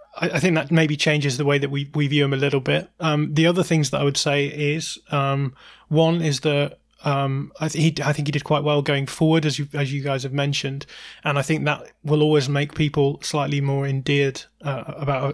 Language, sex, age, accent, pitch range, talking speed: English, male, 20-39, British, 140-155 Hz, 230 wpm